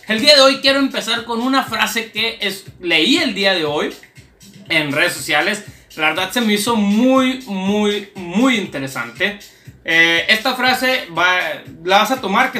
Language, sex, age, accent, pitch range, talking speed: Spanish, male, 30-49, Mexican, 180-235 Hz, 175 wpm